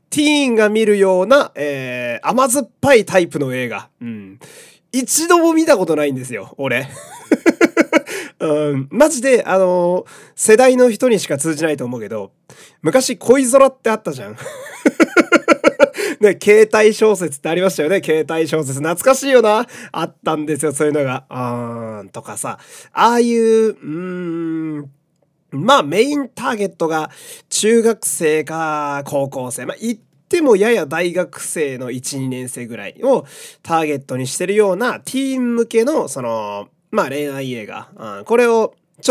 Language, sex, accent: Japanese, male, native